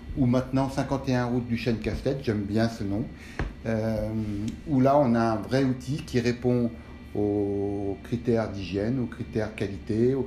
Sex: male